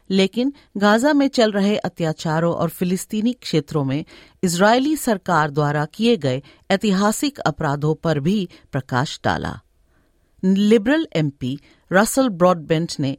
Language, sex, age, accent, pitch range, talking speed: Hindi, female, 50-69, native, 160-230 Hz, 120 wpm